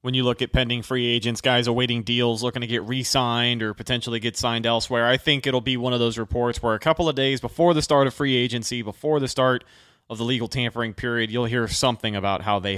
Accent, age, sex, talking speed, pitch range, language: American, 30-49, male, 245 wpm, 105-130 Hz, English